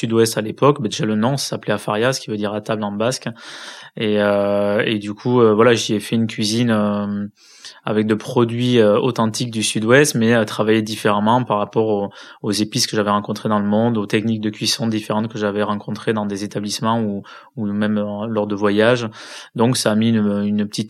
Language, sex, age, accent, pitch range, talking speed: French, male, 20-39, French, 105-120 Hz, 210 wpm